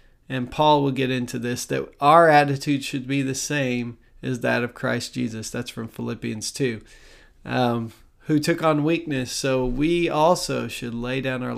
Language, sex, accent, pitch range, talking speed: English, male, American, 120-150 Hz, 175 wpm